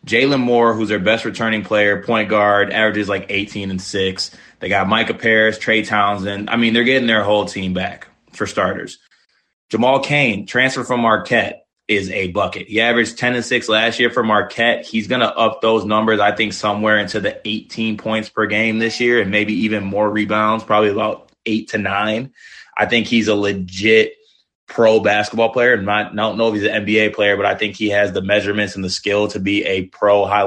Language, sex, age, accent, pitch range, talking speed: English, male, 20-39, American, 105-115 Hz, 210 wpm